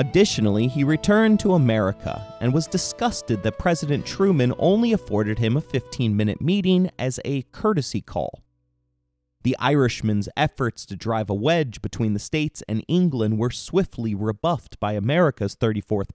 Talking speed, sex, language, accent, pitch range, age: 145 wpm, male, English, American, 105-160 Hz, 30-49